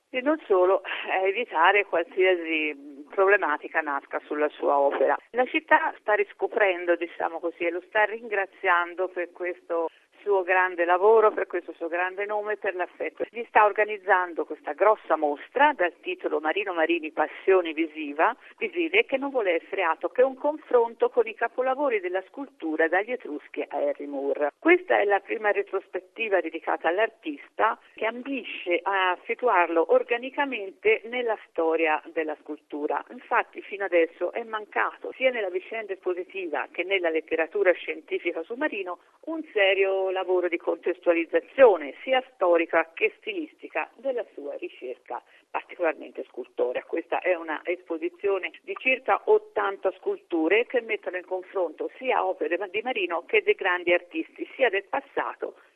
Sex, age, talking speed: female, 50-69, 145 wpm